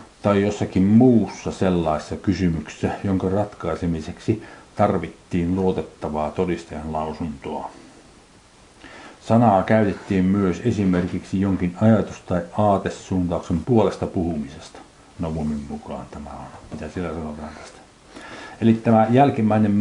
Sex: male